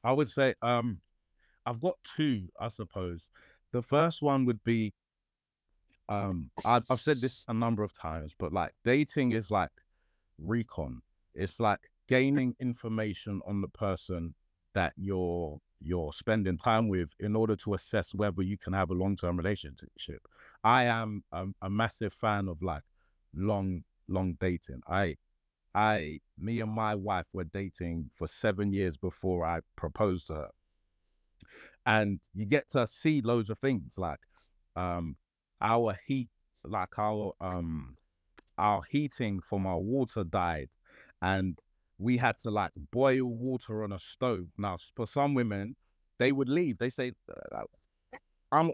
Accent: British